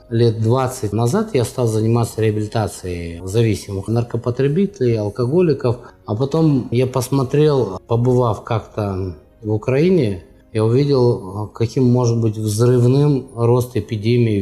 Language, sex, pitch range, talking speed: Russian, male, 100-130 Hz, 110 wpm